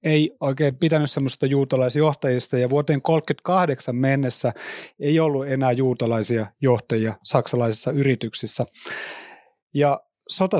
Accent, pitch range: native, 130-170 Hz